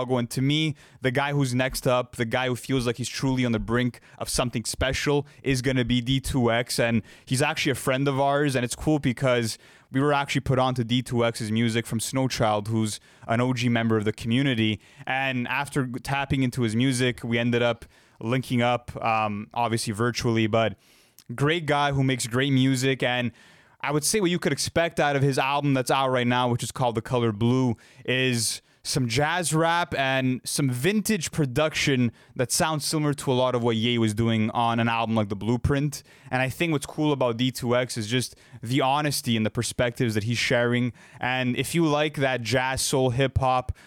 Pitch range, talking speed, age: 120-135 Hz, 200 wpm, 20-39